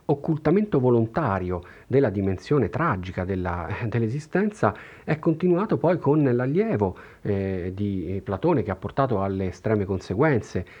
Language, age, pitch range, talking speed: Italian, 40-59, 95-120 Hz, 115 wpm